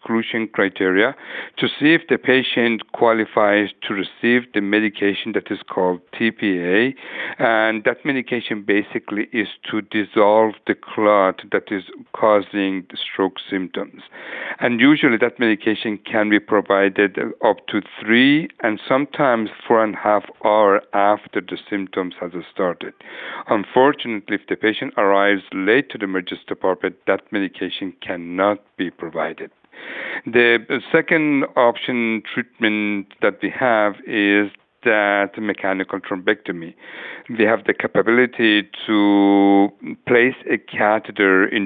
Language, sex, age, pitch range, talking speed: English, male, 60-79, 100-115 Hz, 125 wpm